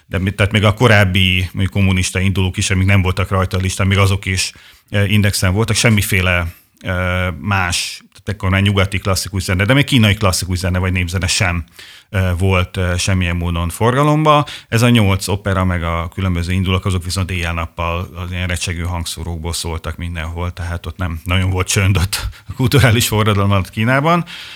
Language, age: Hungarian, 30-49